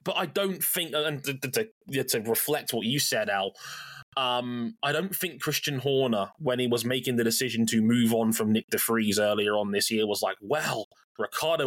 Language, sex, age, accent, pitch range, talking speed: English, male, 20-39, British, 120-155 Hz, 200 wpm